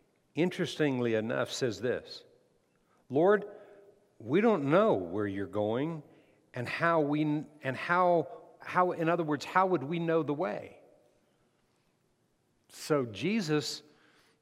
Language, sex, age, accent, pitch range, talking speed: English, male, 60-79, American, 135-180 Hz, 115 wpm